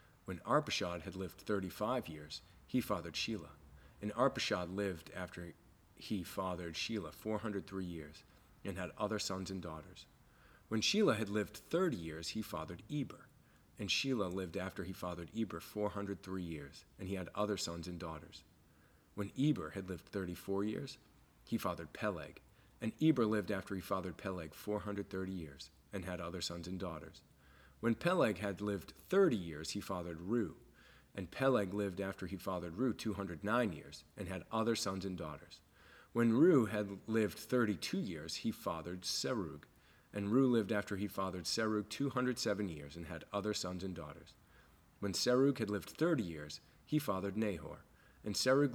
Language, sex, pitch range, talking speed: English, male, 85-110 Hz, 170 wpm